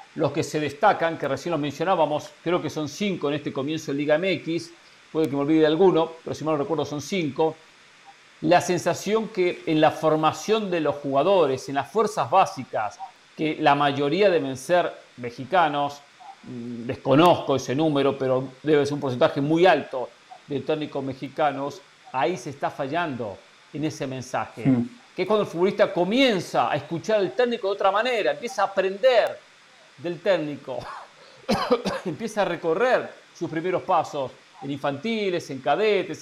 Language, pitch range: Spanish, 145-190 Hz